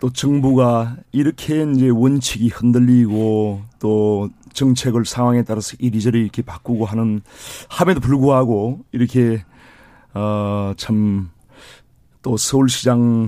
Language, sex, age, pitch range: Korean, male, 40-59, 110-135 Hz